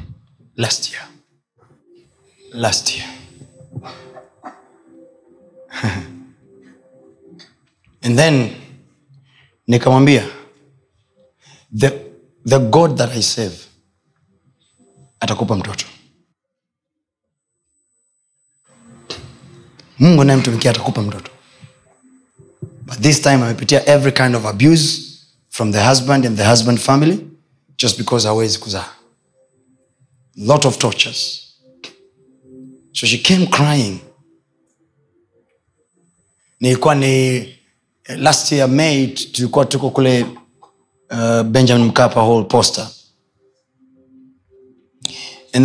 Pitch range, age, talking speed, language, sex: 120-145 Hz, 30-49, 80 wpm, Swahili, male